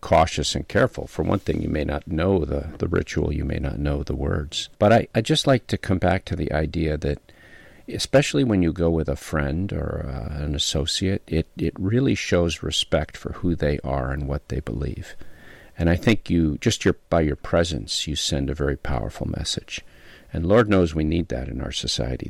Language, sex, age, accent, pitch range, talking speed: English, male, 50-69, American, 75-95 Hz, 215 wpm